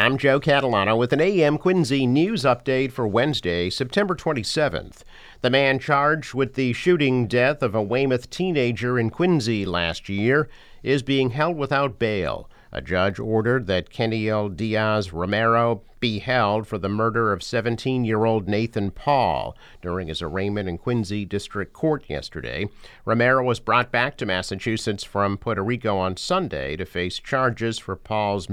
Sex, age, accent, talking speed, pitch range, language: male, 50-69, American, 155 wpm, 95-125 Hz, English